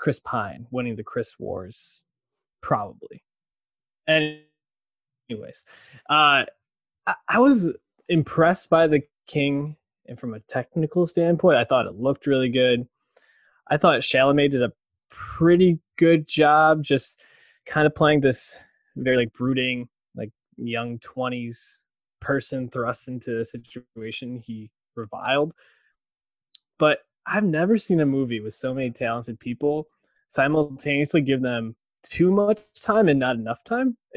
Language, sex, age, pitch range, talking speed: English, male, 20-39, 125-160 Hz, 130 wpm